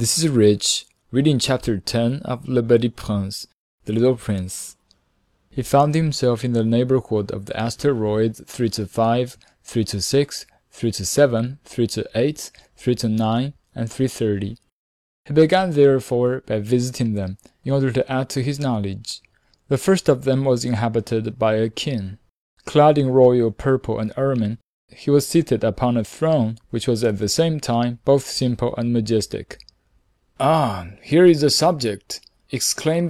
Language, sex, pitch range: Chinese, male, 110-140 Hz